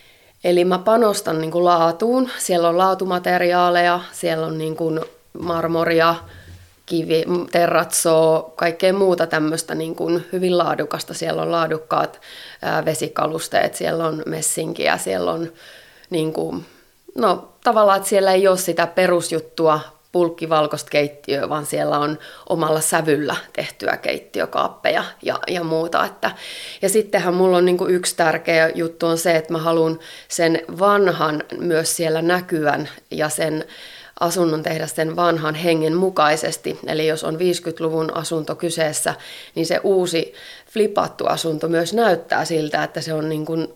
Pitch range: 155-175 Hz